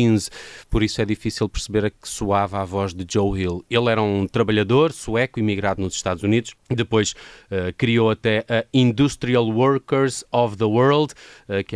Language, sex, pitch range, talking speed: Portuguese, male, 90-115 Hz, 165 wpm